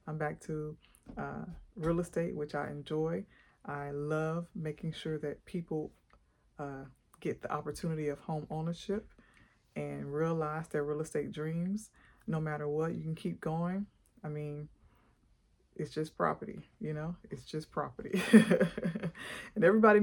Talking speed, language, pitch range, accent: 140 wpm, English, 150-180 Hz, American